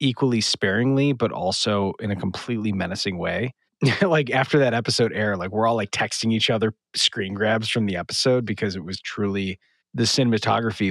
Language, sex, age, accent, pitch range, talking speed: English, male, 30-49, American, 95-115 Hz, 175 wpm